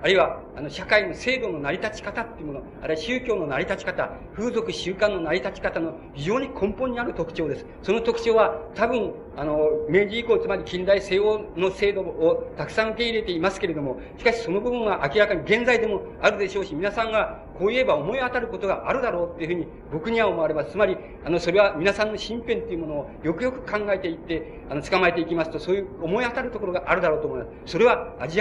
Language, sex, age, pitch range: Japanese, male, 50-69, 170-230 Hz